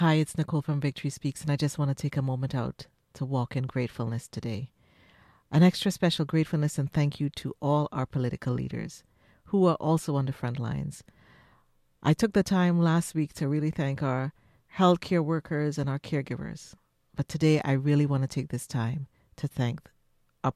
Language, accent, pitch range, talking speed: English, American, 135-165 Hz, 195 wpm